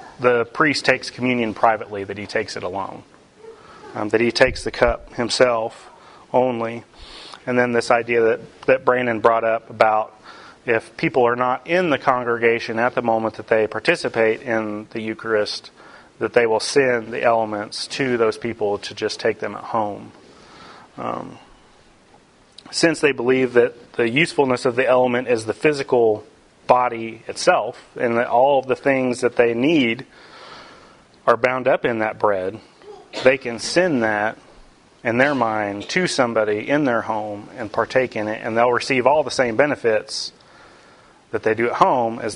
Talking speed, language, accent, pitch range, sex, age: 165 wpm, English, American, 110-130 Hz, male, 30-49